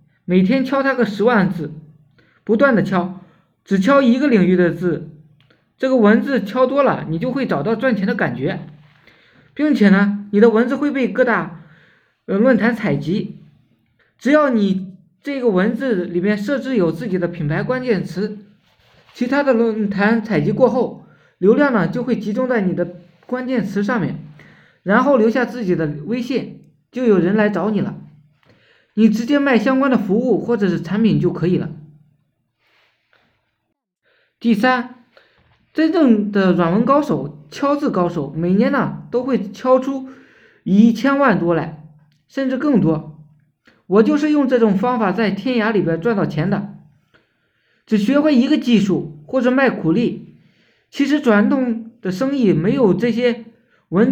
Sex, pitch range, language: male, 175-245 Hz, Chinese